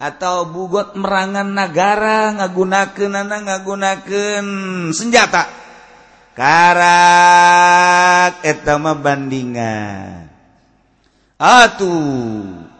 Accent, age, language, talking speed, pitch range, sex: native, 50-69, Indonesian, 50 wpm, 135-180 Hz, male